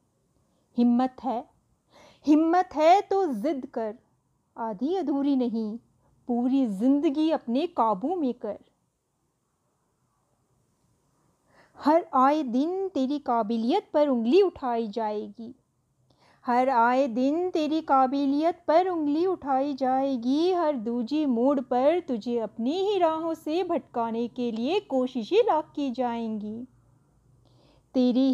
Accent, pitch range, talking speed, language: native, 235-305 Hz, 110 wpm, Hindi